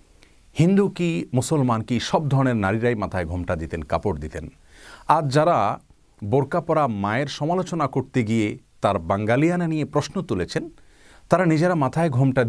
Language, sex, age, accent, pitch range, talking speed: Bengali, male, 40-59, native, 105-155 Hz, 140 wpm